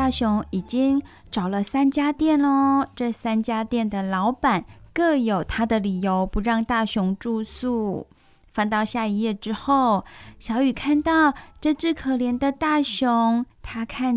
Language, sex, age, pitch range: Chinese, female, 20-39, 215-285 Hz